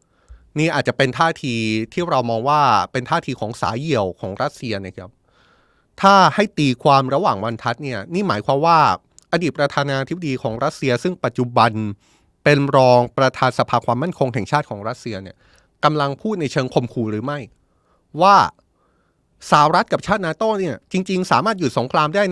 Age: 20-39